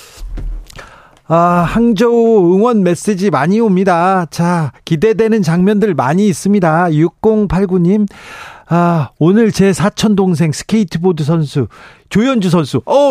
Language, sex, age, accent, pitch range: Korean, male, 40-59, native, 140-200 Hz